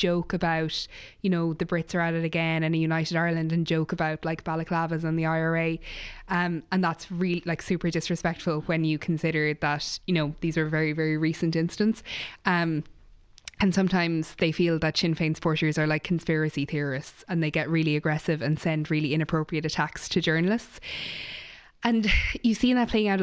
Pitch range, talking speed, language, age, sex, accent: 155-175 Hz, 185 wpm, English, 20-39, female, Irish